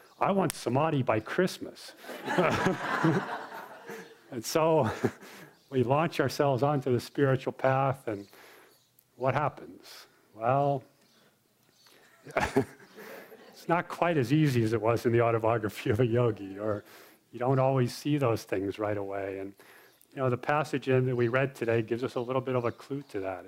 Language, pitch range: English, 105-135 Hz